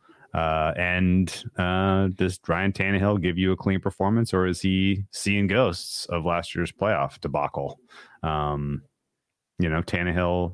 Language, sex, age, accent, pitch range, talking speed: English, male, 30-49, American, 80-100 Hz, 140 wpm